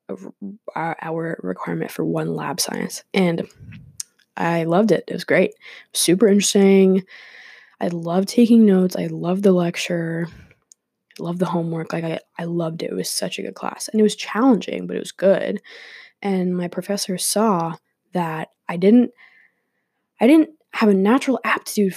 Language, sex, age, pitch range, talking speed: English, female, 20-39, 175-210 Hz, 160 wpm